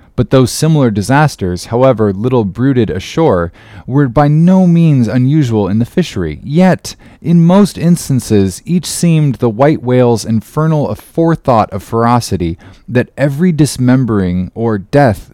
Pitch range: 100-130 Hz